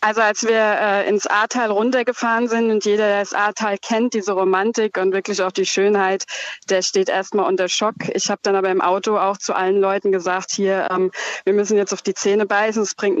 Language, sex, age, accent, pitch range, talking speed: German, female, 20-39, German, 190-215 Hz, 220 wpm